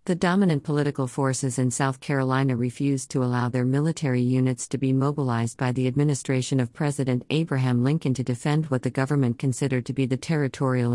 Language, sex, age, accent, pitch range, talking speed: English, female, 50-69, American, 130-155 Hz, 180 wpm